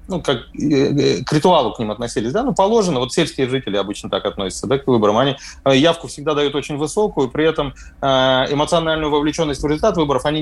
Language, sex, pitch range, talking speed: Russian, male, 135-180 Hz, 190 wpm